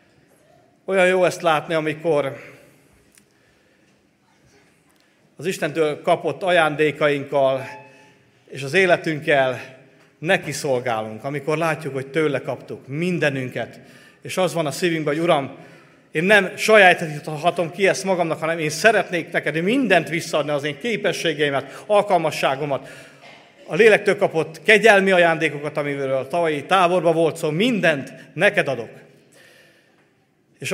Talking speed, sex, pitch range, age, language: 115 wpm, male, 140-170 Hz, 40-59, Hungarian